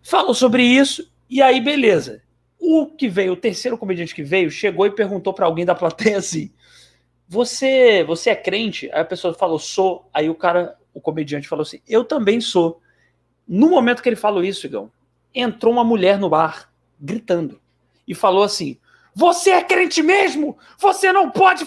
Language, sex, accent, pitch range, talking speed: Portuguese, male, Brazilian, 175-265 Hz, 175 wpm